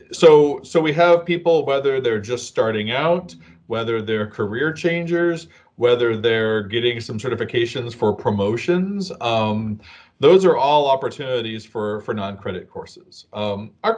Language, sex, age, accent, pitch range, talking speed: English, male, 40-59, American, 105-150 Hz, 135 wpm